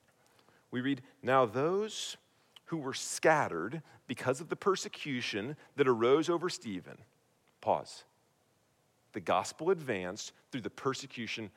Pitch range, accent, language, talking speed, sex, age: 145-205 Hz, American, English, 115 wpm, male, 40-59